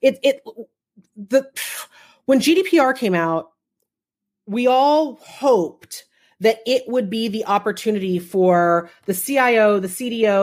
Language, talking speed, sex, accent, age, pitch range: English, 120 wpm, female, American, 30-49, 185-240 Hz